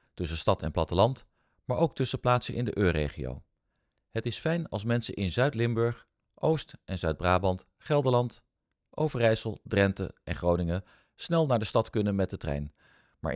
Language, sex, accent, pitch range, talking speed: Dutch, male, Dutch, 90-125 Hz, 155 wpm